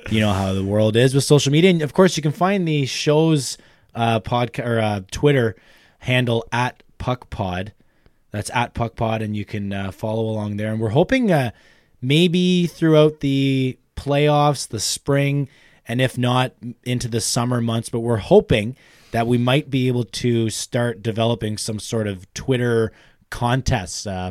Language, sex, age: English, male, 20-39